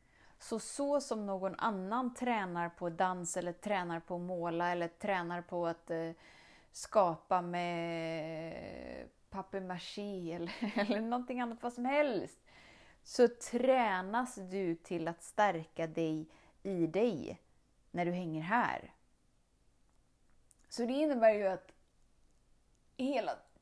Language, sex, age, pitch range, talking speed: Swedish, female, 30-49, 180-260 Hz, 120 wpm